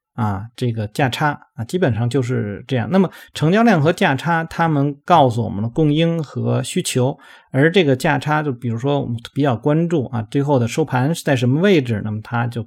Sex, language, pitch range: male, Chinese, 120-160 Hz